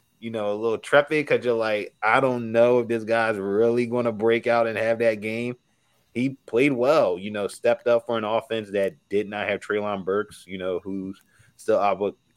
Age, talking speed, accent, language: 20-39, 215 wpm, American, English